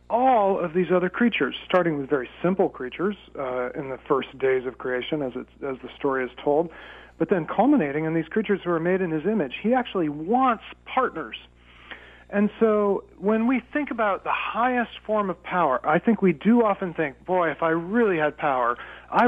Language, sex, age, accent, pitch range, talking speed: English, male, 40-59, American, 145-195 Hz, 200 wpm